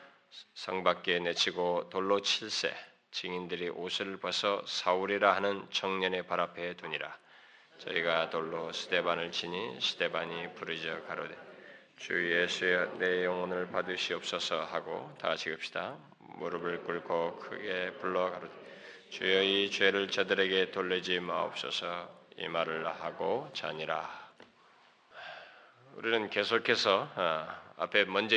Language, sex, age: Korean, male, 20-39